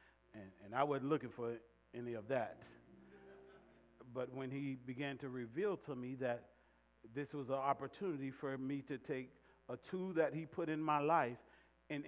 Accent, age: American, 40-59